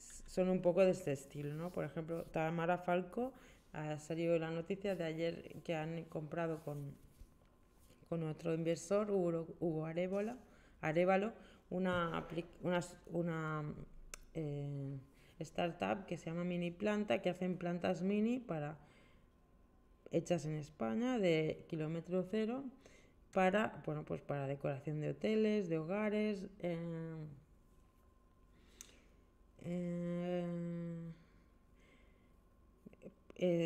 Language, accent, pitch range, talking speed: Spanish, Spanish, 155-185 Hz, 105 wpm